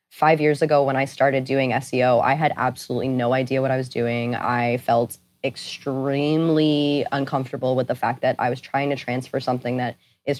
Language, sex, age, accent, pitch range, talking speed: English, female, 20-39, American, 135-155 Hz, 190 wpm